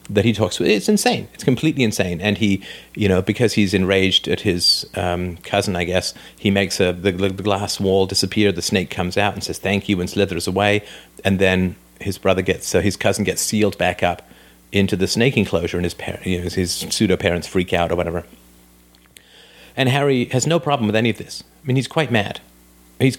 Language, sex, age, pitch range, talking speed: English, male, 40-59, 90-105 Hz, 205 wpm